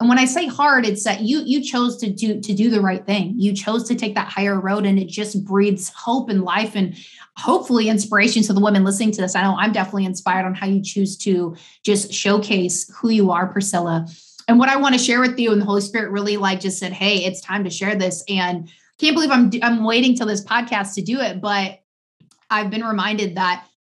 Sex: female